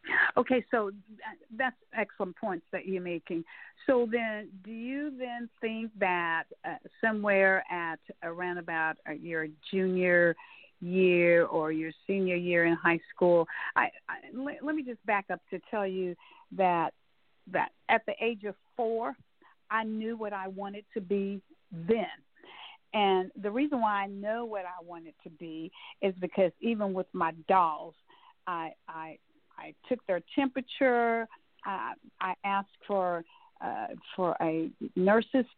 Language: English